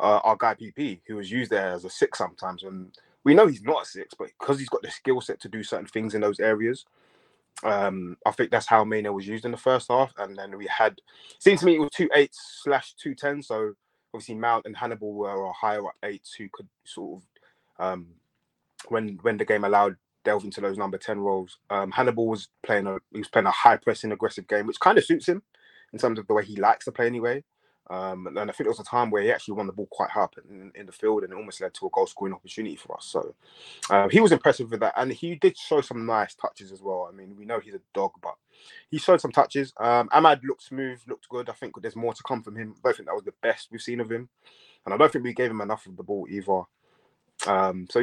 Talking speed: 260 wpm